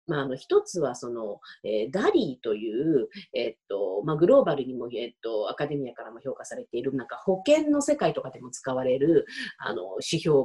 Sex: female